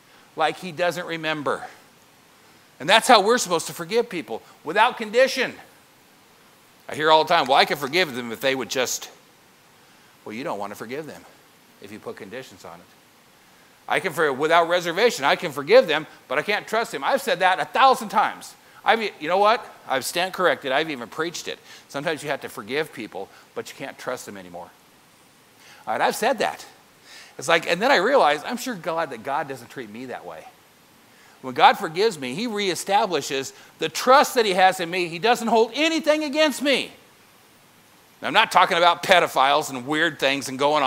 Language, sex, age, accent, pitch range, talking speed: English, male, 50-69, American, 155-245 Hz, 200 wpm